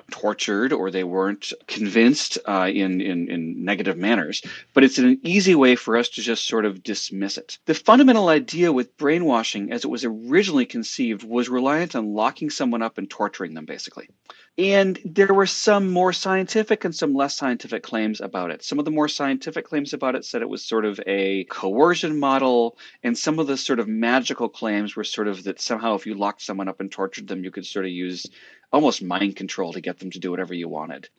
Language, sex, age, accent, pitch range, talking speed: English, male, 40-59, American, 95-145 Hz, 215 wpm